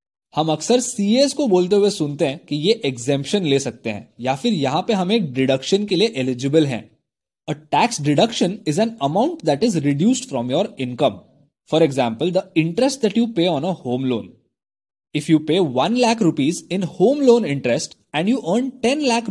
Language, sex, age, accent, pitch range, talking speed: Hindi, male, 20-39, native, 140-215 Hz, 195 wpm